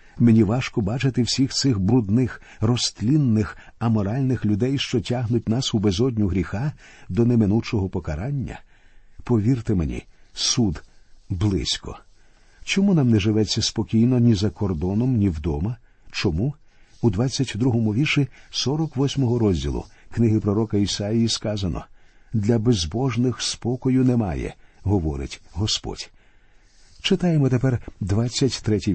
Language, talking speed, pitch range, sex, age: Ukrainian, 105 wpm, 100-125 Hz, male, 50-69